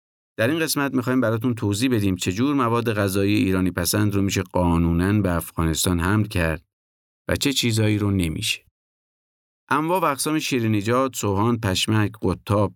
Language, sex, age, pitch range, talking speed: Persian, male, 50-69, 90-120 Hz, 150 wpm